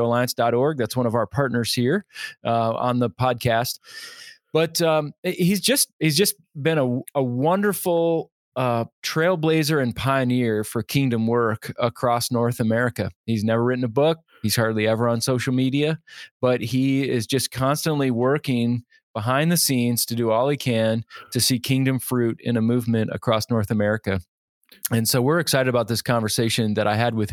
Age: 20-39